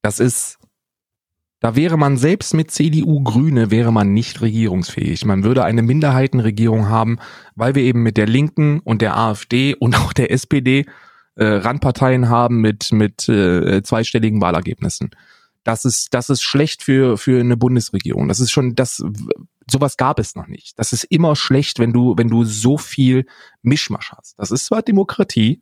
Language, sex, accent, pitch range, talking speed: German, male, German, 110-145 Hz, 170 wpm